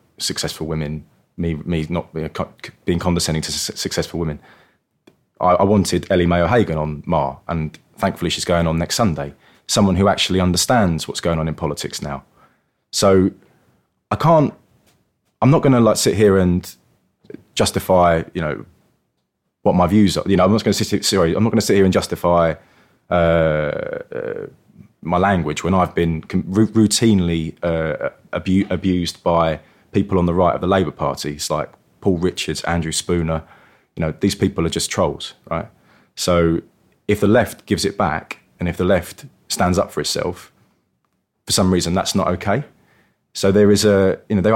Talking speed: 180 wpm